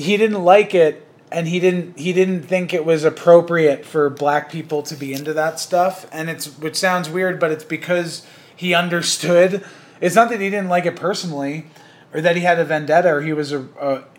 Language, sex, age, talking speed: English, male, 30-49, 205 wpm